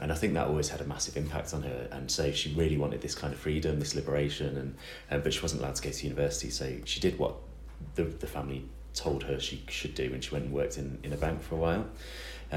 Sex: male